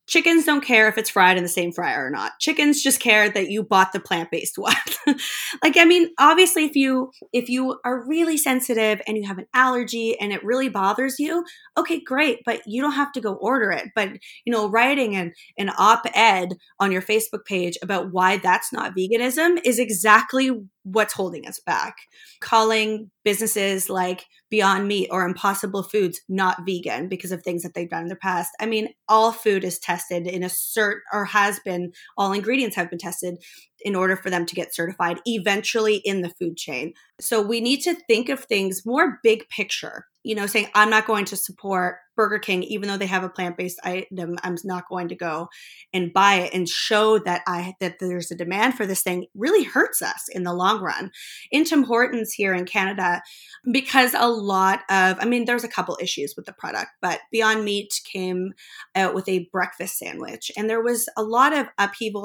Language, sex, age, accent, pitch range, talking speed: English, female, 20-39, American, 185-240 Hz, 200 wpm